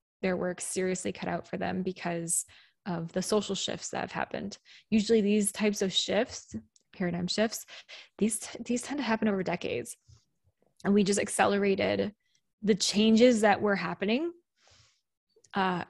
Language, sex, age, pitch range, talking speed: English, female, 20-39, 180-215 Hz, 145 wpm